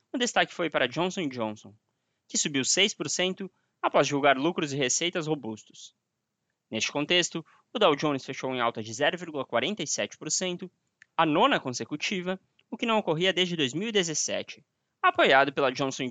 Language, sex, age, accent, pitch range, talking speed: Portuguese, male, 20-39, Brazilian, 130-180 Hz, 140 wpm